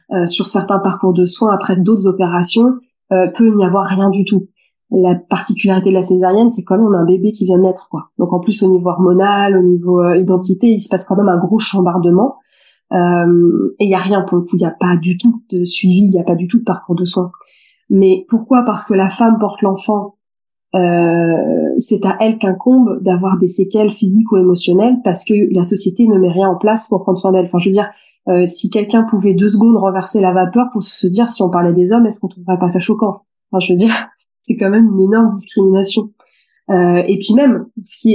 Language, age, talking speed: French, 20-39, 240 wpm